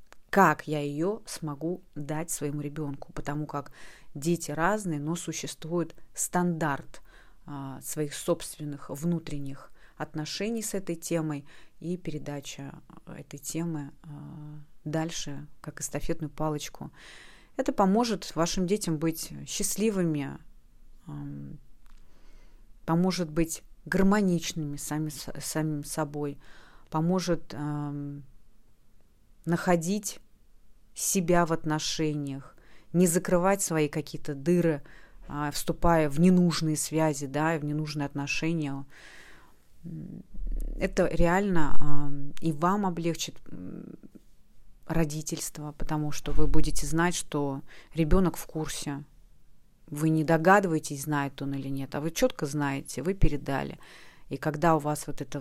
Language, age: Russian, 30-49